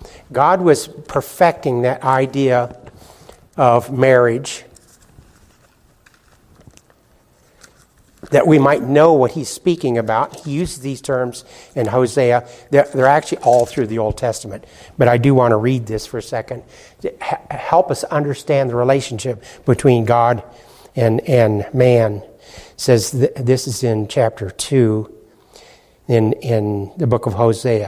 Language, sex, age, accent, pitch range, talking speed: English, male, 60-79, American, 120-140 Hz, 135 wpm